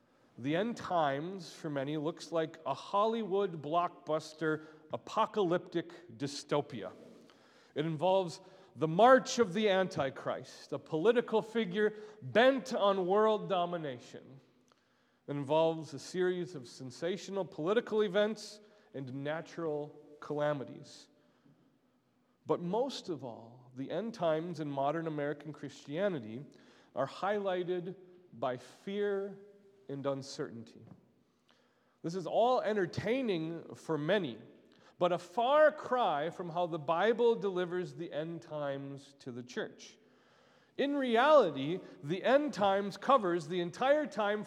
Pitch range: 155-215 Hz